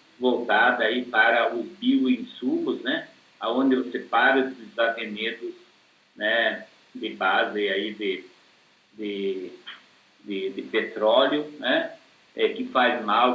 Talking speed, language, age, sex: 110 wpm, Portuguese, 60-79, male